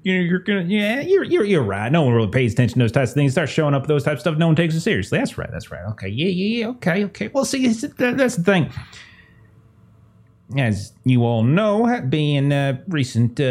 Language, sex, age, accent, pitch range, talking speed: English, male, 30-49, American, 110-145 Hz, 245 wpm